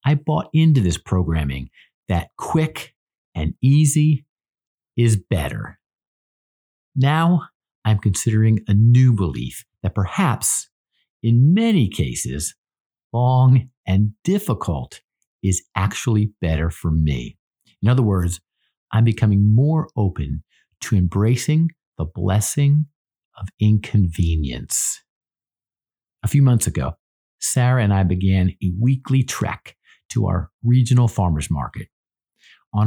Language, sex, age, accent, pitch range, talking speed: English, male, 50-69, American, 90-125 Hz, 110 wpm